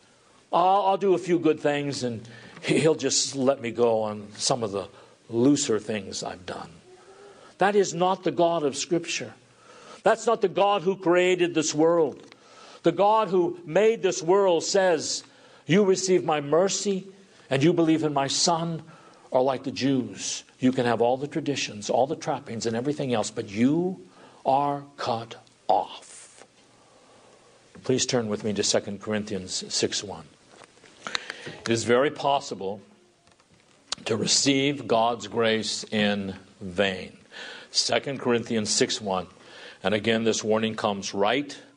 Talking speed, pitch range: 145 wpm, 115-160 Hz